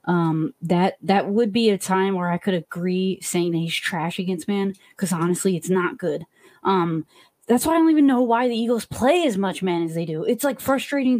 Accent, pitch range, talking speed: American, 175-210 Hz, 225 wpm